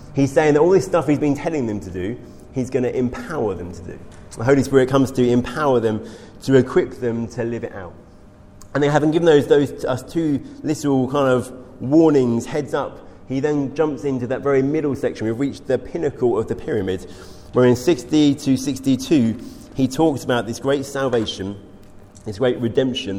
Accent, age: British, 30-49